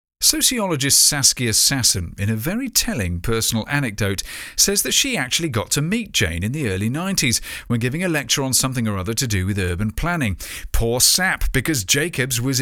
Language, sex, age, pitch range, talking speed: English, male, 40-59, 105-145 Hz, 185 wpm